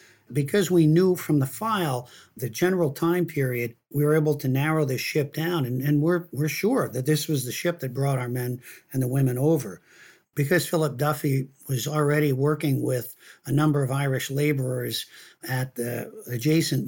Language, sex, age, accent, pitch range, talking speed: English, male, 50-69, American, 130-155 Hz, 180 wpm